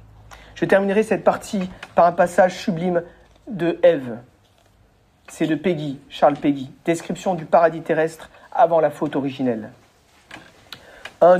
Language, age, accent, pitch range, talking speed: French, 40-59, French, 140-190 Hz, 125 wpm